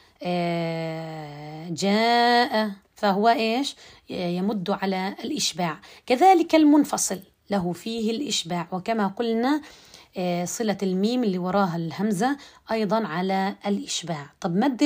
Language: Arabic